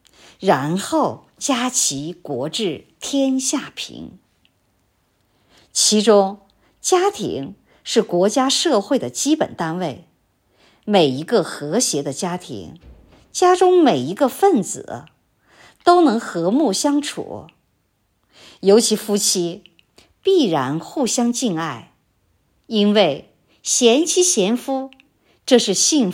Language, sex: Chinese, male